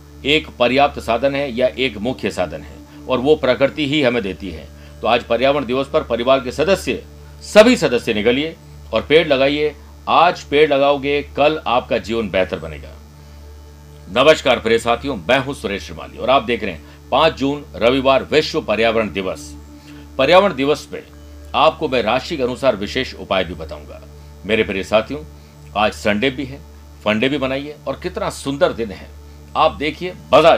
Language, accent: Hindi, native